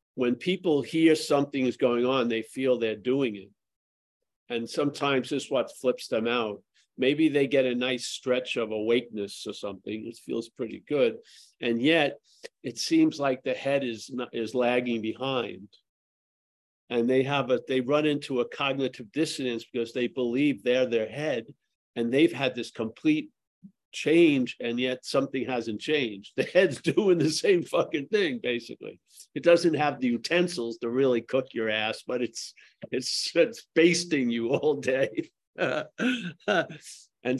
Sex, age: male, 50-69